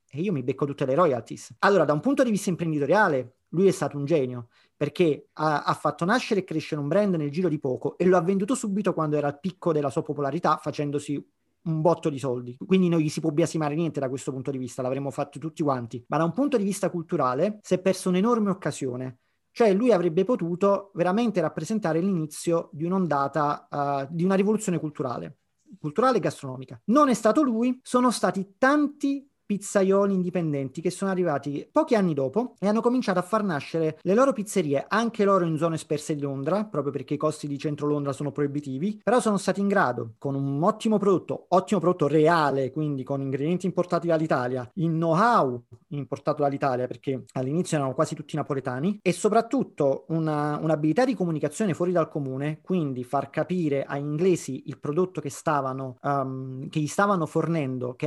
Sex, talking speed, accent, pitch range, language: male, 190 wpm, native, 145-190 Hz, Italian